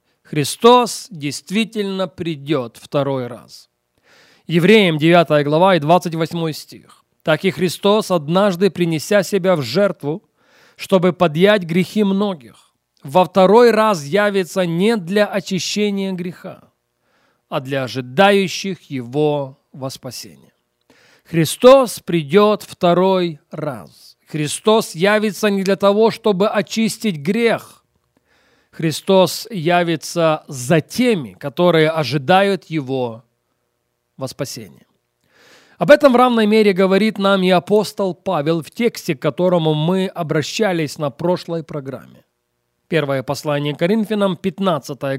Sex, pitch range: male, 150-200 Hz